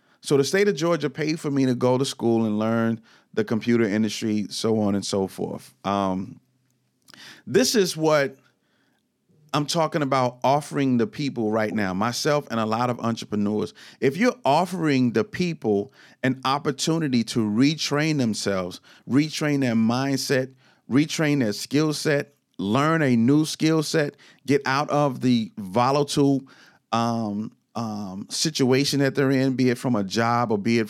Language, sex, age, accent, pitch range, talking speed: English, male, 40-59, American, 110-140 Hz, 155 wpm